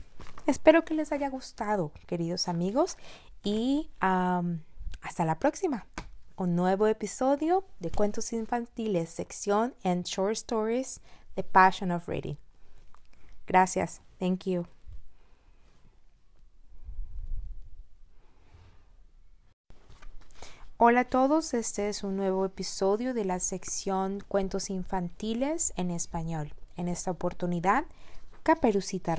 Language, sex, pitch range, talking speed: English, female, 160-215 Hz, 100 wpm